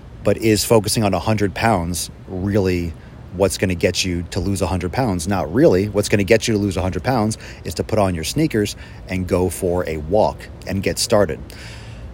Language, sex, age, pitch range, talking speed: English, male, 30-49, 90-110 Hz, 205 wpm